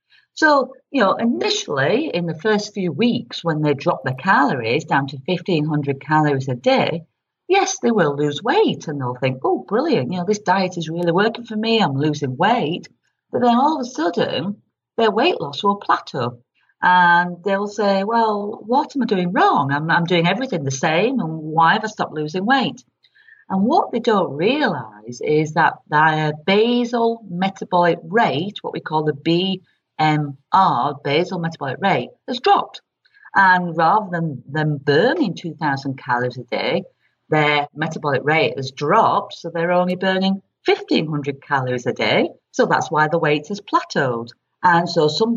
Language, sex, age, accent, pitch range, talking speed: English, female, 40-59, British, 145-220 Hz, 170 wpm